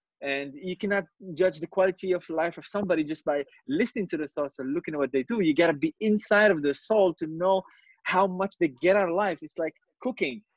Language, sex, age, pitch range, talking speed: English, male, 20-39, 160-225 Hz, 240 wpm